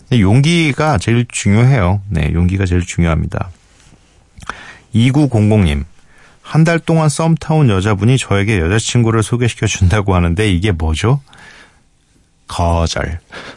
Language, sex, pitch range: Korean, male, 90-135 Hz